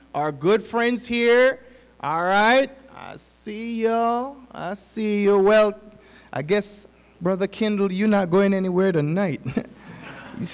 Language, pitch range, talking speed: English, 175-245 Hz, 130 wpm